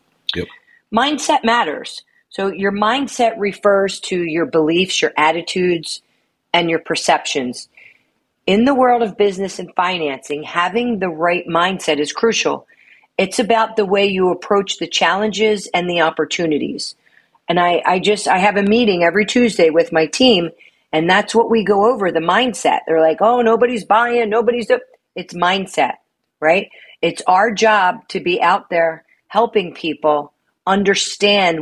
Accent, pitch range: American, 165-210 Hz